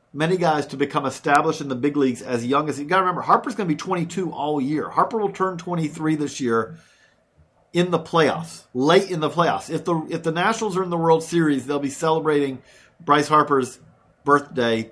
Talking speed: 210 wpm